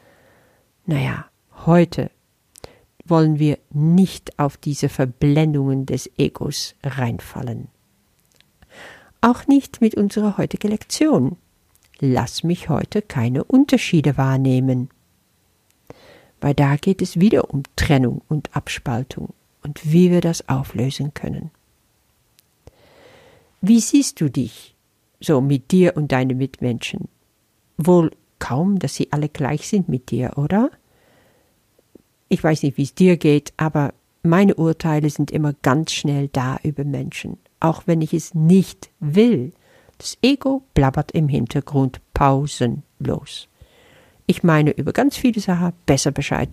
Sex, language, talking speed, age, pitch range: female, German, 125 wpm, 50-69, 140-180 Hz